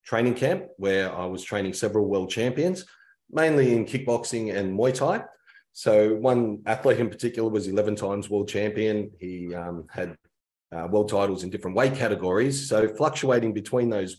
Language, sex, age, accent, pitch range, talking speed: English, male, 30-49, Australian, 95-120 Hz, 165 wpm